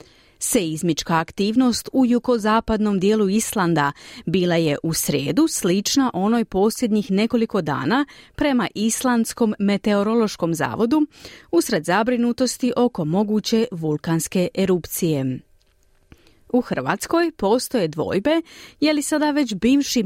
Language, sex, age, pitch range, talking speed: Croatian, female, 30-49, 165-245 Hz, 100 wpm